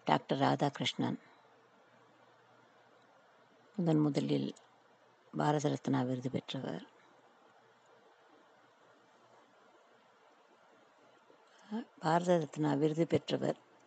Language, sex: Tamil, female